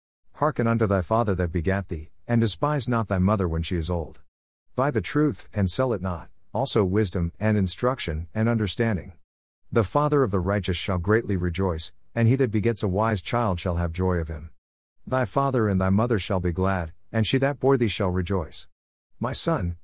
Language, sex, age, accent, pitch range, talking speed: English, male, 50-69, American, 90-130 Hz, 200 wpm